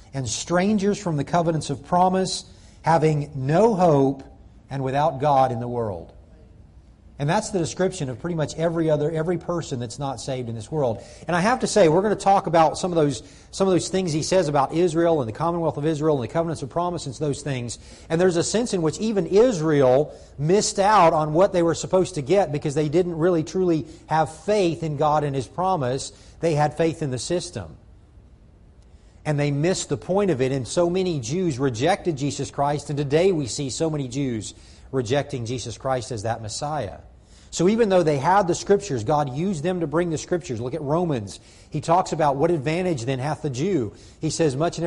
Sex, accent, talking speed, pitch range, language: male, American, 215 wpm, 130-175 Hz, English